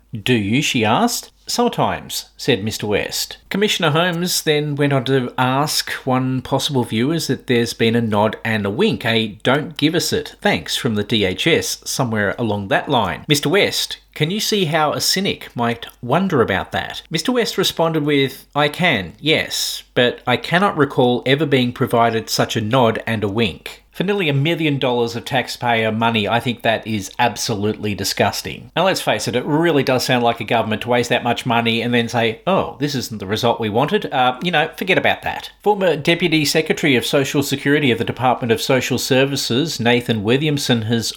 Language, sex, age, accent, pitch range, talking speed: English, male, 40-59, Australian, 115-150 Hz, 190 wpm